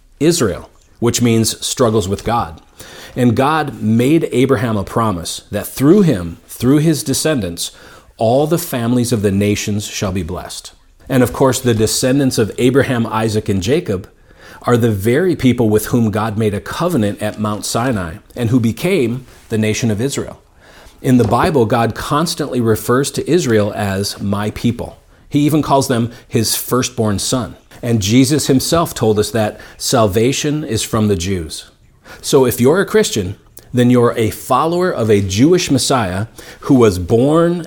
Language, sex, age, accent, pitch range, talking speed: English, male, 40-59, American, 105-135 Hz, 160 wpm